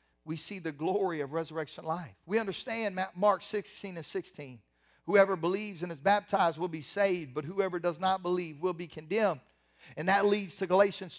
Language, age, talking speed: English, 40-59, 180 wpm